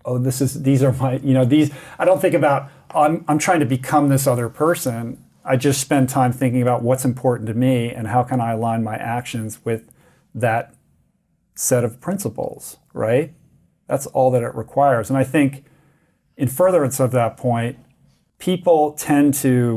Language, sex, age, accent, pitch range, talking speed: English, male, 40-59, American, 115-135 Hz, 180 wpm